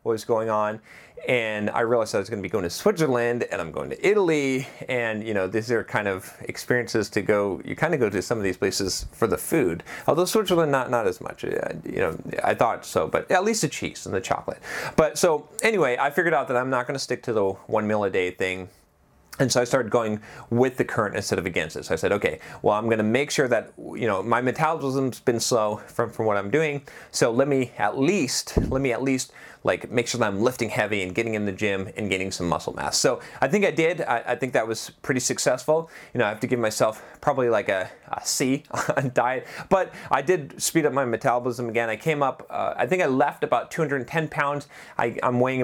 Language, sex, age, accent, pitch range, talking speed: English, male, 30-49, American, 110-145 Hz, 240 wpm